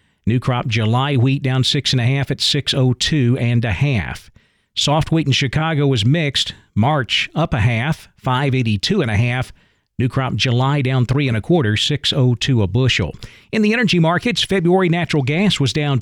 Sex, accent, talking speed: male, American, 180 wpm